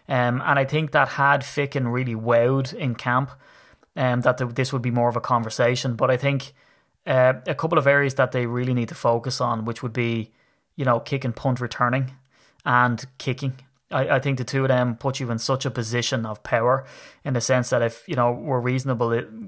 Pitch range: 120-135 Hz